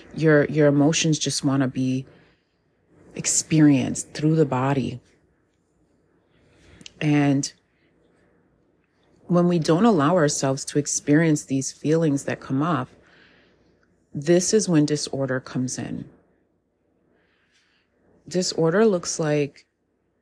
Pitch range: 135-160 Hz